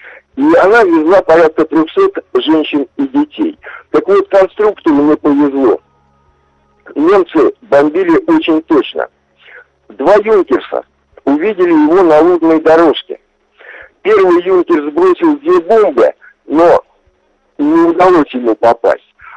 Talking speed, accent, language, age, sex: 105 wpm, native, Russian, 60-79, male